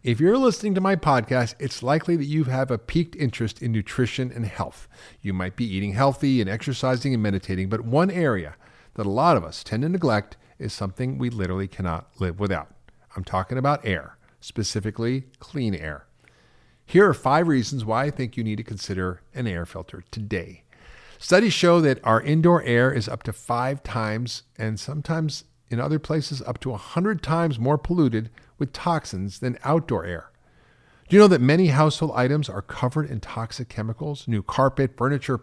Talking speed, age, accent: 185 wpm, 50-69, American